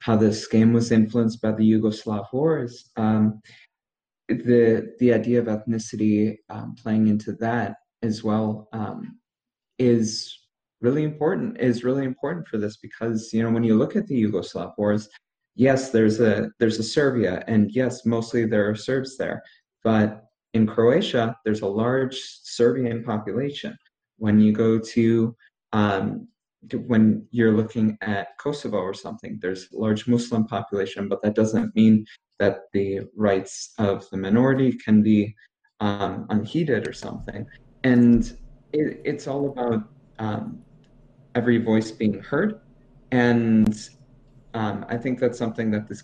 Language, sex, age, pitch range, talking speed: English, male, 20-39, 110-125 Hz, 145 wpm